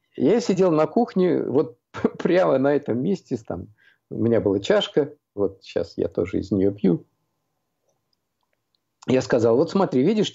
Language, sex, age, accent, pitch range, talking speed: Russian, male, 50-69, native, 120-185 Hz, 150 wpm